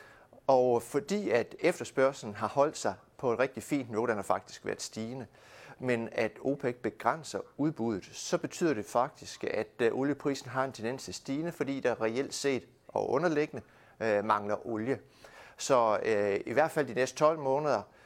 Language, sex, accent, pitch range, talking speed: Danish, male, native, 110-140 Hz, 170 wpm